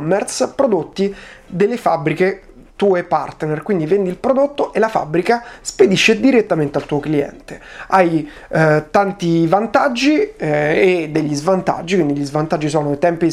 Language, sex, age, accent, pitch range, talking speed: Italian, male, 30-49, native, 150-190 Hz, 140 wpm